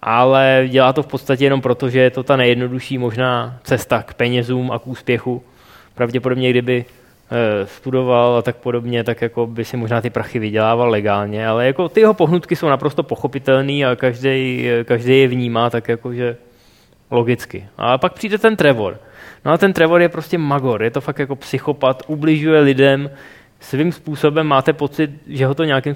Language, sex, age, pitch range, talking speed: Czech, male, 20-39, 125-160 Hz, 180 wpm